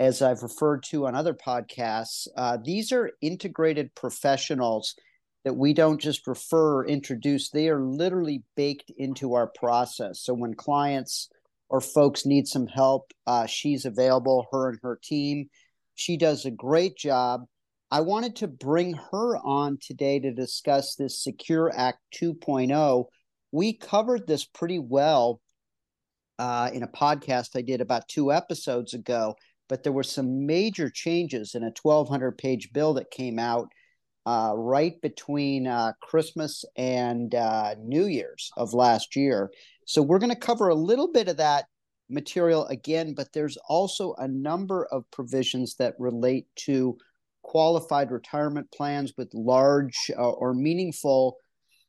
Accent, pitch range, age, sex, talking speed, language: American, 125-155 Hz, 40-59, male, 150 wpm, English